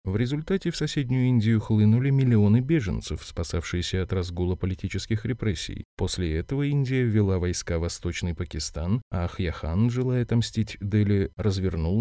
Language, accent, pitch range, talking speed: Russian, native, 90-120 Hz, 135 wpm